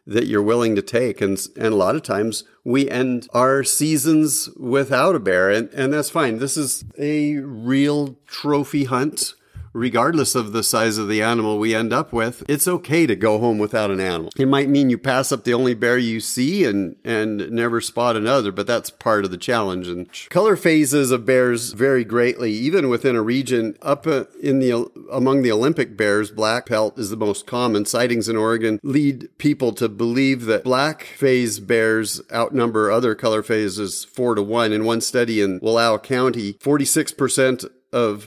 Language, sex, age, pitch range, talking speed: English, male, 50-69, 110-135 Hz, 185 wpm